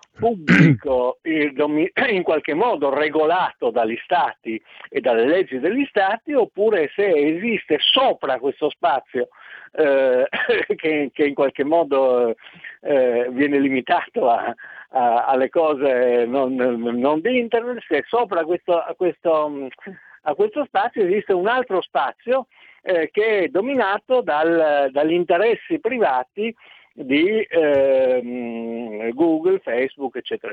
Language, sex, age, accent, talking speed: Italian, male, 60-79, native, 110 wpm